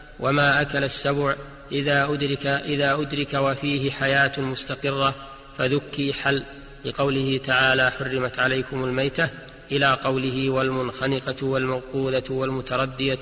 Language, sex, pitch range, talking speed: Arabic, male, 135-145 Hz, 100 wpm